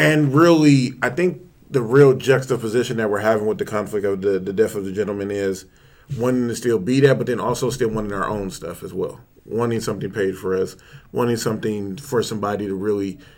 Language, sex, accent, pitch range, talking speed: English, male, American, 100-125 Hz, 210 wpm